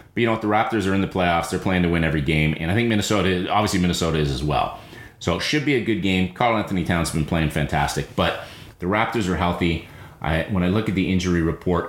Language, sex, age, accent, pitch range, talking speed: English, male, 30-49, American, 80-105 Hz, 245 wpm